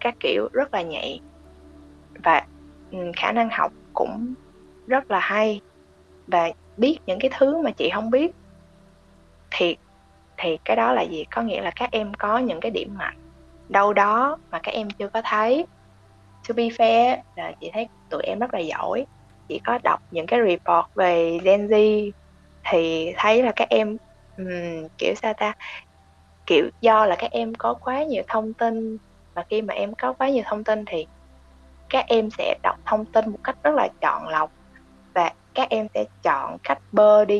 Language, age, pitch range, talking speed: Vietnamese, 20-39, 170-230 Hz, 185 wpm